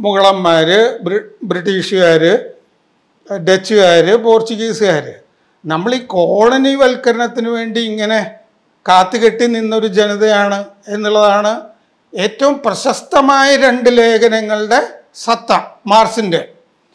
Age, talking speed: 40-59, 75 wpm